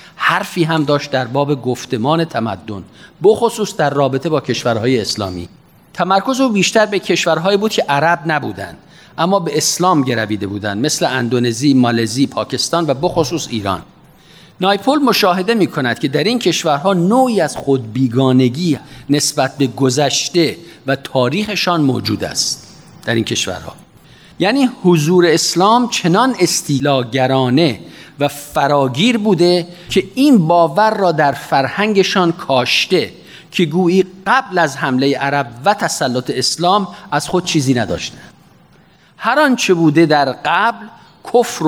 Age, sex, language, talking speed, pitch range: 50-69, male, Persian, 130 wpm, 135-195 Hz